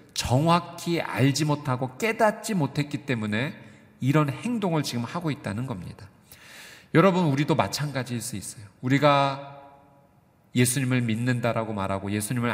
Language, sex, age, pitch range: Korean, male, 40-59, 115-155 Hz